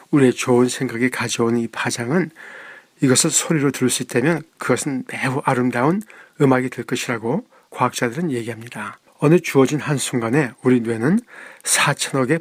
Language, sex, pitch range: Korean, male, 125-150 Hz